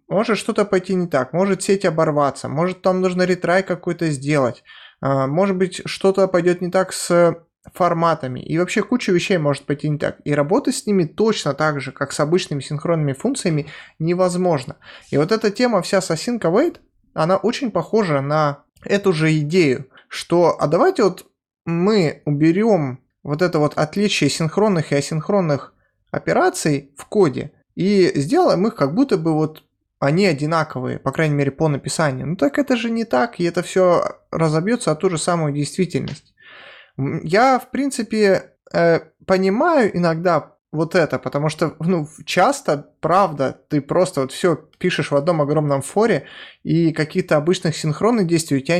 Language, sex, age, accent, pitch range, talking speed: Russian, male, 20-39, native, 150-190 Hz, 160 wpm